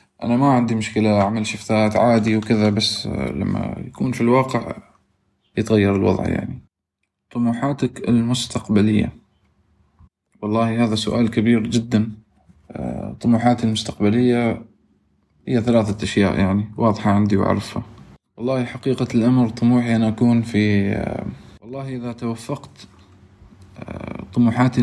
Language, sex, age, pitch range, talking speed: Arabic, male, 20-39, 100-115 Hz, 105 wpm